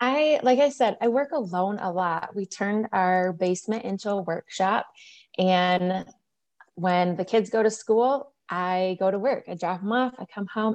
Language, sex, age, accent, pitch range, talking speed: English, female, 20-39, American, 180-230 Hz, 190 wpm